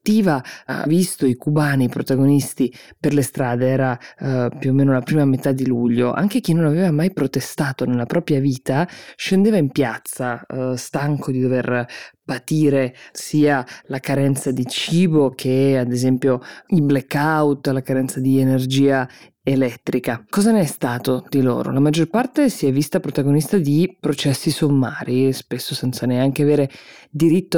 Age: 20-39